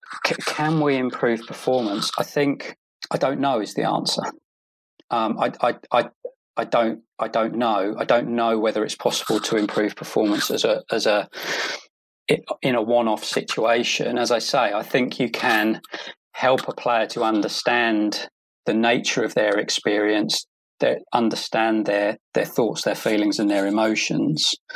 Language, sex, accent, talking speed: English, male, British, 160 wpm